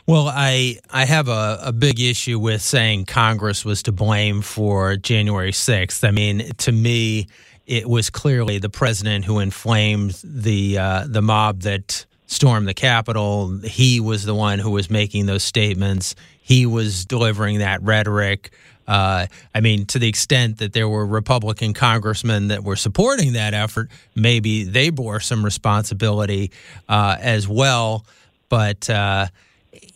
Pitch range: 105-125 Hz